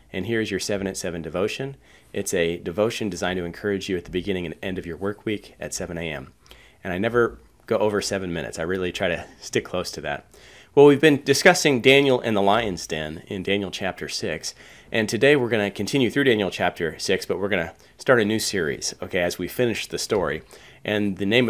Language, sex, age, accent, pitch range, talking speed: English, male, 30-49, American, 90-120 Hz, 225 wpm